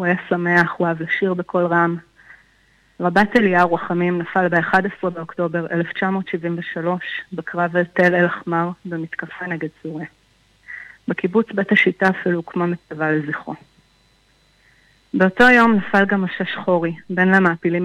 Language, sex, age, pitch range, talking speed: Hebrew, female, 30-49, 170-195 Hz, 120 wpm